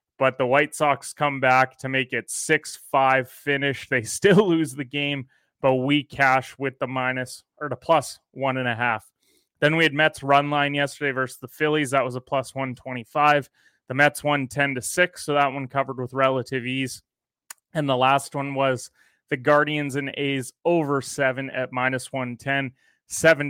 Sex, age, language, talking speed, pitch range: male, 30-49, English, 180 wpm, 130-145 Hz